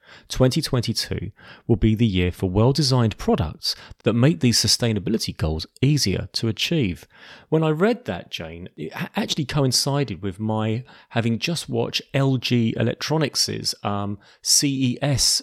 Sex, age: male, 30-49